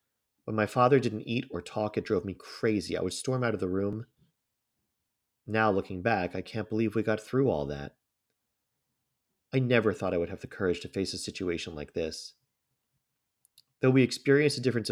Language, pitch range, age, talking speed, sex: English, 95-130 Hz, 40-59, 195 wpm, male